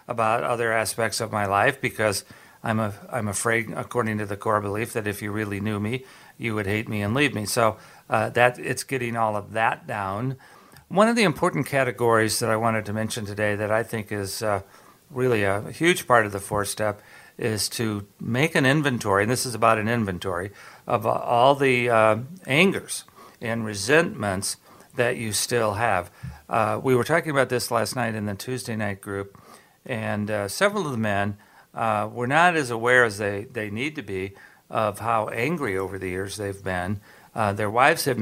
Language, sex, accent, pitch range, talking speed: English, male, American, 105-125 Hz, 200 wpm